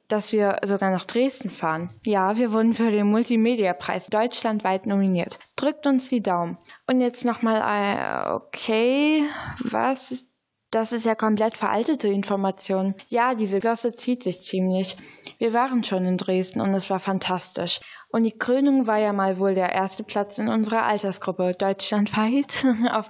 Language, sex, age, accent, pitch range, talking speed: German, female, 10-29, German, 190-235 Hz, 155 wpm